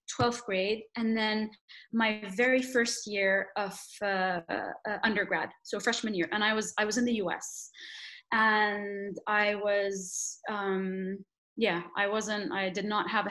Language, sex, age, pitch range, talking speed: English, female, 20-39, 195-230 Hz, 160 wpm